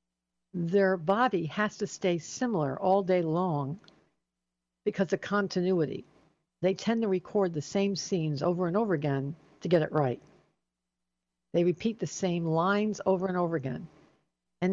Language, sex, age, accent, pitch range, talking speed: English, female, 60-79, American, 150-200 Hz, 150 wpm